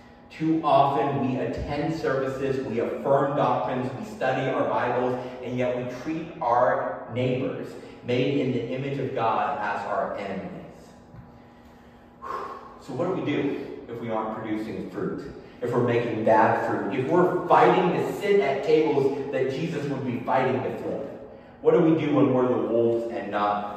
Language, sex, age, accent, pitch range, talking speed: English, male, 30-49, American, 115-150 Hz, 165 wpm